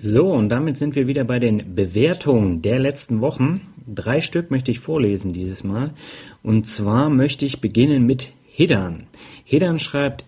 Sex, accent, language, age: male, German, German, 40-59